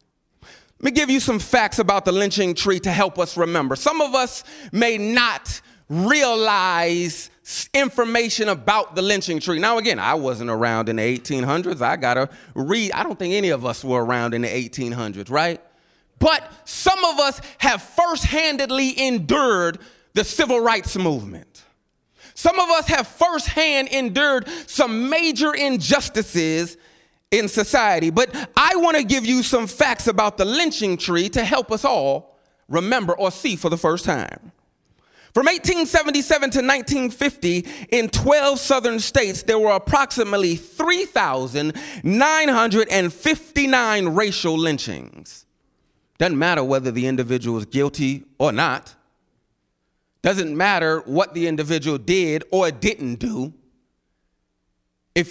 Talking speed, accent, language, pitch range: 135 wpm, American, English, 165-270 Hz